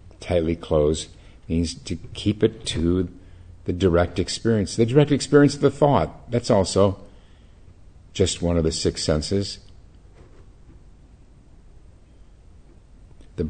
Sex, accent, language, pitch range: male, American, English, 80-95 Hz